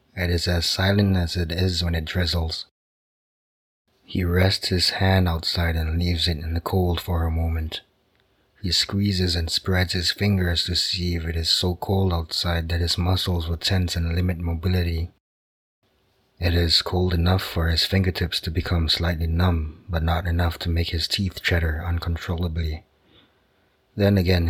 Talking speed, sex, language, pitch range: 165 wpm, male, English, 85-90 Hz